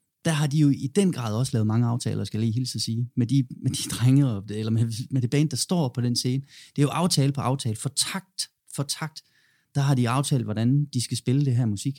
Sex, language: male, Danish